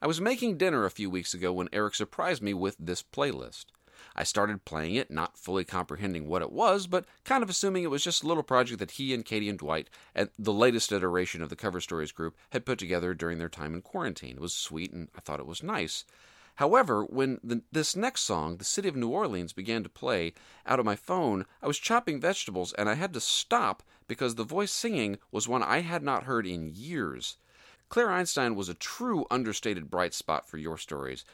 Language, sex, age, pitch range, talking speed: English, male, 40-59, 80-125 Hz, 225 wpm